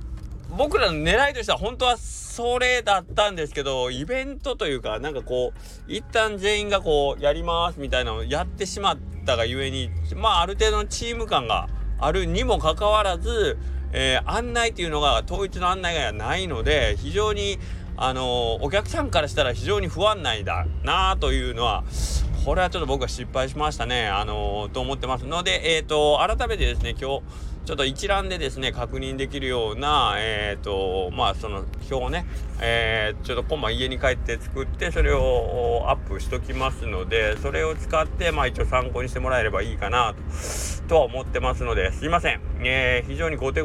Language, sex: Japanese, male